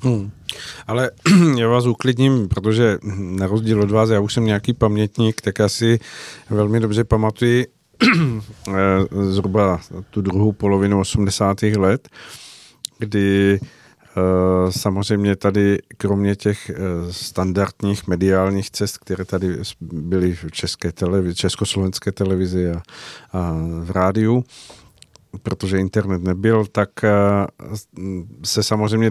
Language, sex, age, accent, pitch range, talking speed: Czech, male, 50-69, native, 95-110 Hz, 105 wpm